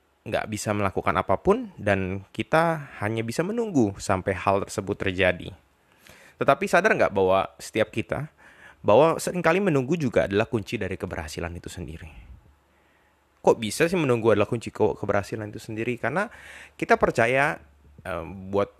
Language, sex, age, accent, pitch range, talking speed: Indonesian, male, 20-39, native, 95-125 Hz, 135 wpm